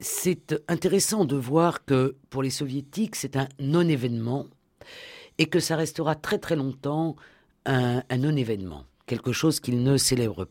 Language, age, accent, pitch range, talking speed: French, 50-69, French, 125-165 Hz, 150 wpm